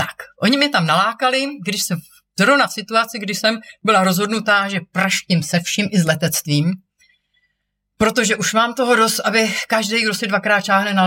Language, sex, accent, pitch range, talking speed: Czech, female, native, 175-210 Hz, 180 wpm